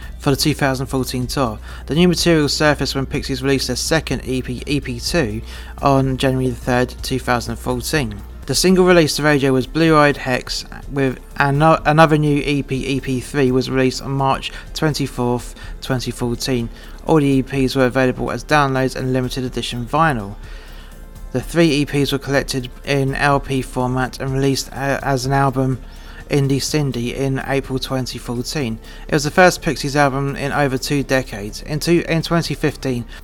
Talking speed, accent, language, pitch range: 145 wpm, British, English, 125-145 Hz